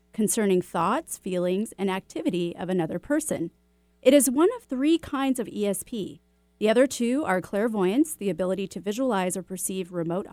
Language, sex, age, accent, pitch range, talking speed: English, female, 30-49, American, 185-260 Hz, 165 wpm